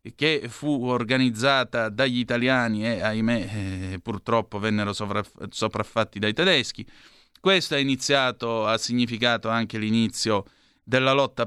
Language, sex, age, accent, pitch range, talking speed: Italian, male, 30-49, native, 110-130 Hz, 105 wpm